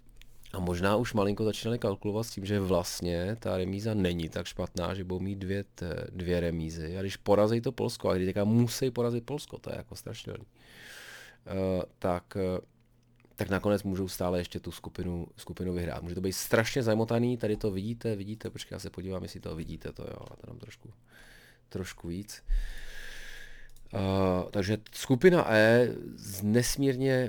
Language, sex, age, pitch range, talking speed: Czech, male, 30-49, 90-115 Hz, 165 wpm